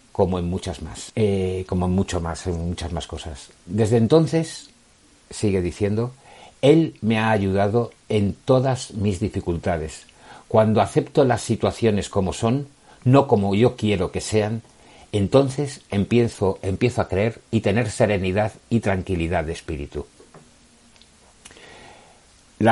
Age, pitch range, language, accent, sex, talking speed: 60-79, 85-115 Hz, Spanish, Spanish, male, 130 wpm